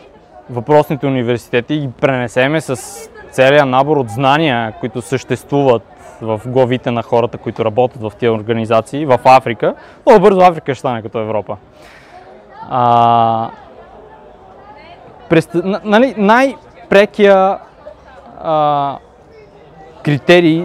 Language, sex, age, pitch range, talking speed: Bulgarian, male, 20-39, 125-175 Hz, 105 wpm